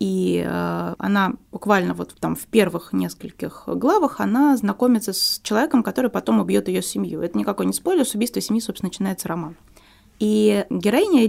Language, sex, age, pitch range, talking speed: Russian, female, 20-39, 180-230 Hz, 160 wpm